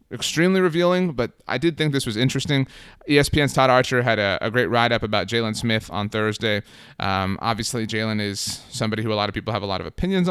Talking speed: 215 wpm